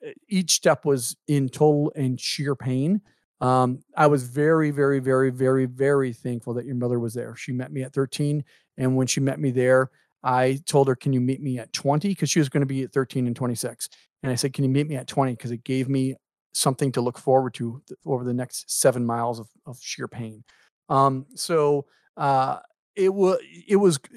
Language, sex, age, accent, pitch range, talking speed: English, male, 40-59, American, 130-155 Hz, 215 wpm